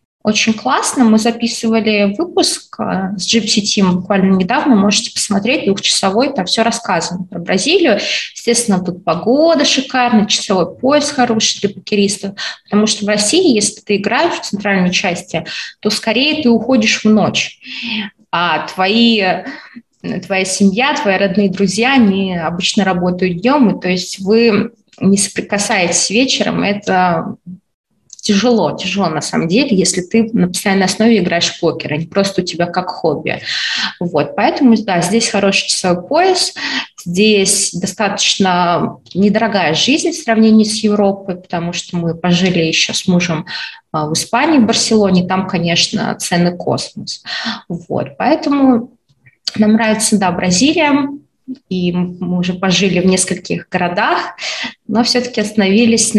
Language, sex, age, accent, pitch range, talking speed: Russian, female, 20-39, native, 185-230 Hz, 135 wpm